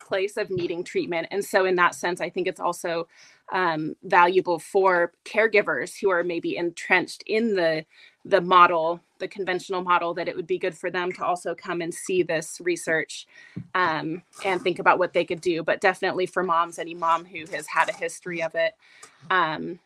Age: 20-39